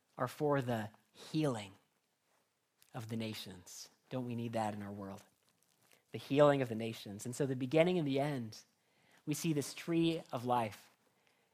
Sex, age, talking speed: male, 40-59, 165 wpm